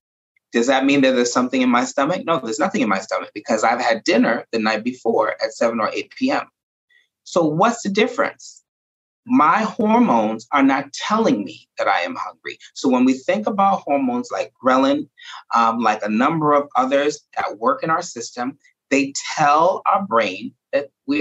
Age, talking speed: 30-49, 185 wpm